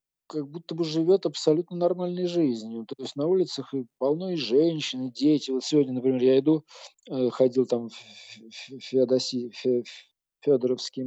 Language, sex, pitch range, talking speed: Russian, male, 115-150 Hz, 140 wpm